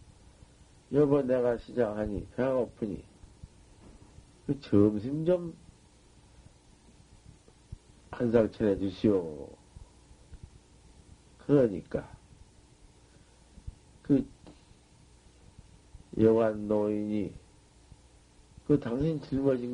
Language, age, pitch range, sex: Korean, 50-69, 105-140 Hz, male